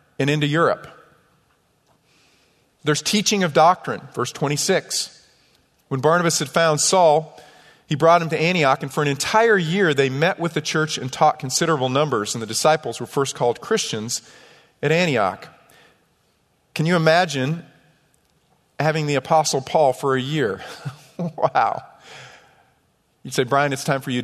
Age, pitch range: 40-59, 135-160 Hz